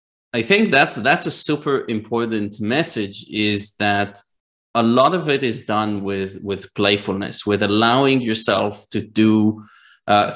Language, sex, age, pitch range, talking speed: English, male, 30-49, 100-115 Hz, 145 wpm